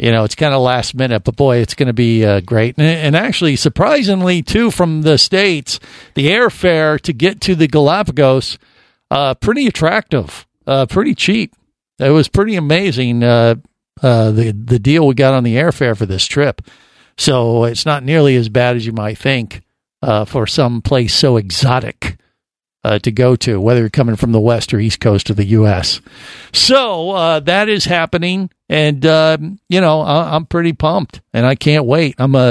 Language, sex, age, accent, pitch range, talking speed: English, male, 50-69, American, 120-160 Hz, 190 wpm